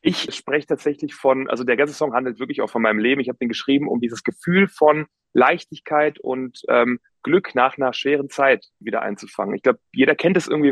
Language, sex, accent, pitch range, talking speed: German, male, German, 125-150 Hz, 215 wpm